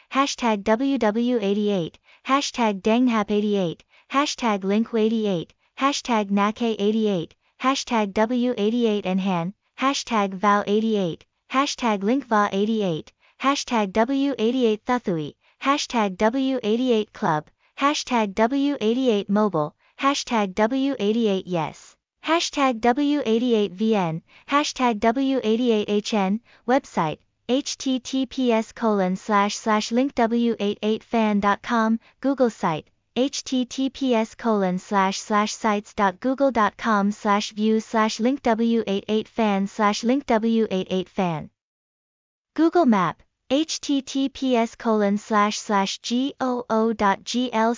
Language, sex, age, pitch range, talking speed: Vietnamese, female, 20-39, 205-250 Hz, 80 wpm